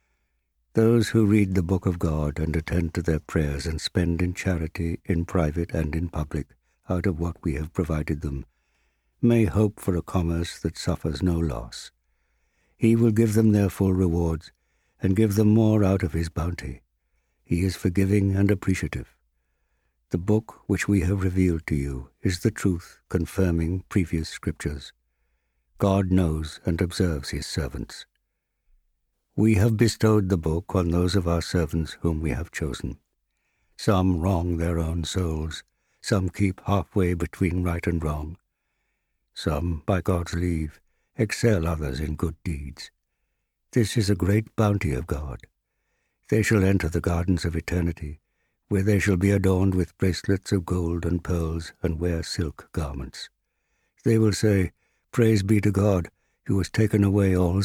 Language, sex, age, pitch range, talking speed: English, male, 60-79, 80-100 Hz, 160 wpm